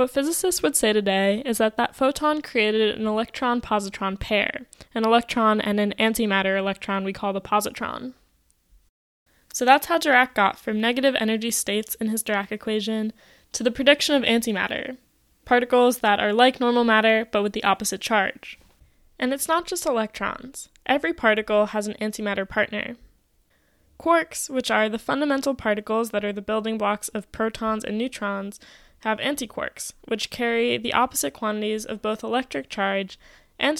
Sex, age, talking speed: female, 10-29, 155 wpm